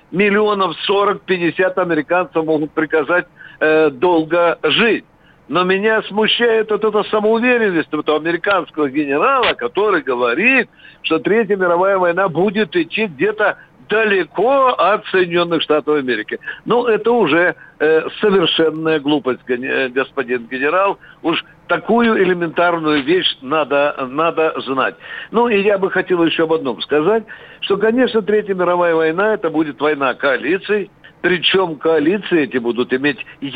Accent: native